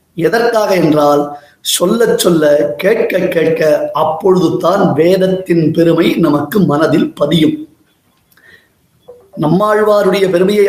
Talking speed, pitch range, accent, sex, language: 75 wpm, 175-230 Hz, native, male, Tamil